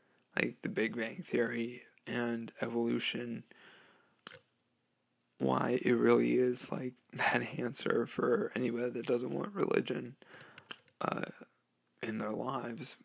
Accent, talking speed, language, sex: American, 110 wpm, English, male